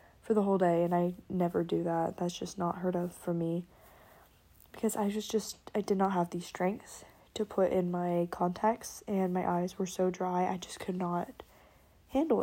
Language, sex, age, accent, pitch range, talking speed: English, female, 20-39, American, 180-220 Hz, 205 wpm